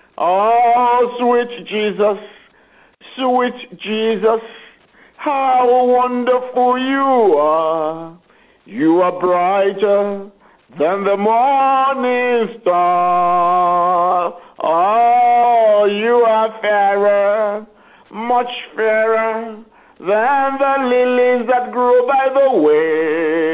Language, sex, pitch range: English, male, 185-245 Hz